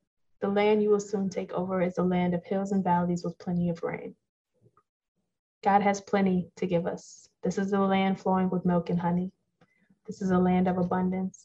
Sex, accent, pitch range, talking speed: female, American, 170-200 Hz, 205 wpm